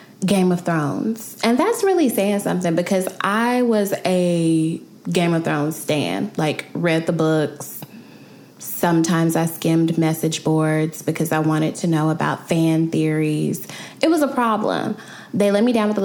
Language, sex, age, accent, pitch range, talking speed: English, female, 10-29, American, 165-225 Hz, 160 wpm